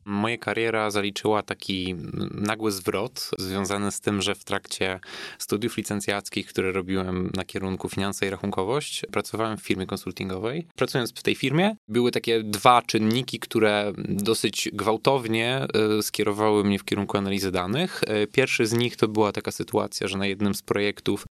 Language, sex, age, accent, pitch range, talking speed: Polish, male, 20-39, native, 100-115 Hz, 150 wpm